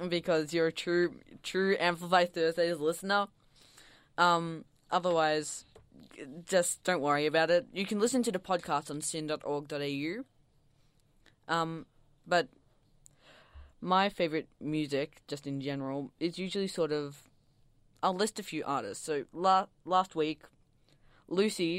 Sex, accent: female, Australian